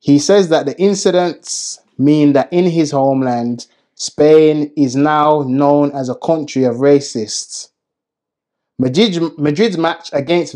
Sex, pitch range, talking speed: male, 130-160 Hz, 125 wpm